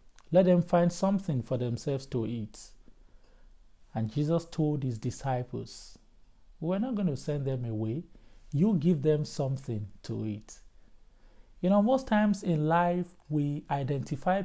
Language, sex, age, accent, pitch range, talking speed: English, male, 50-69, Nigerian, 125-185 Hz, 140 wpm